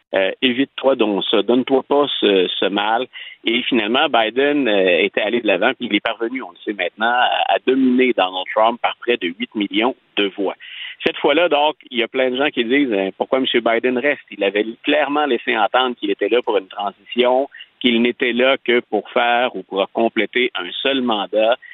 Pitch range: 115-145 Hz